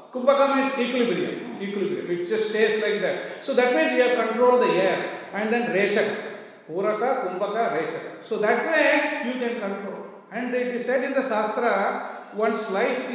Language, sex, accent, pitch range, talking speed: English, male, Indian, 185-240 Hz, 175 wpm